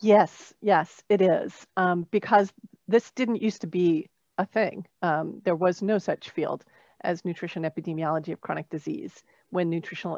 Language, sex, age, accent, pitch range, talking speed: English, female, 40-59, American, 180-220 Hz, 160 wpm